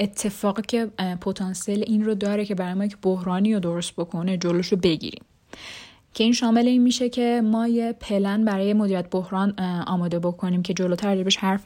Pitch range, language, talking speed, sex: 185-230 Hz, Persian, 175 wpm, female